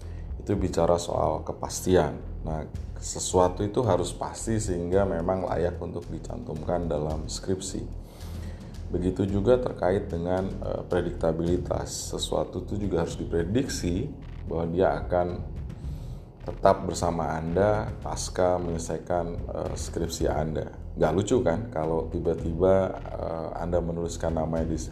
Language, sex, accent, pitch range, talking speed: Indonesian, male, native, 80-95 Hz, 115 wpm